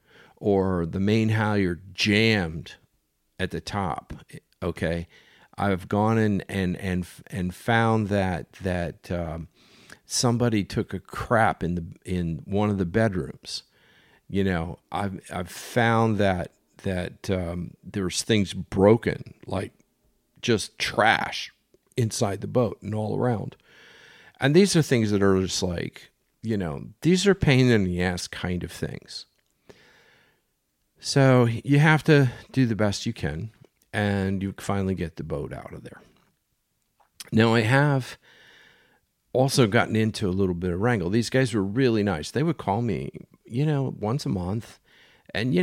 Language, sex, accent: English, male, American